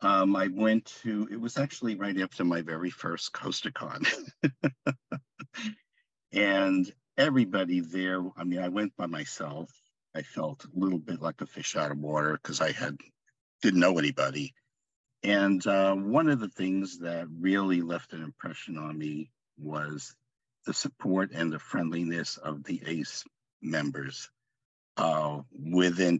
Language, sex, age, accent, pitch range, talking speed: English, male, 50-69, American, 85-125 Hz, 145 wpm